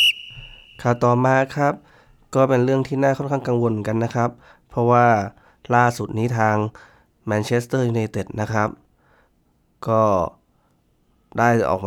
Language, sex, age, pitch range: Thai, male, 20-39, 100-120 Hz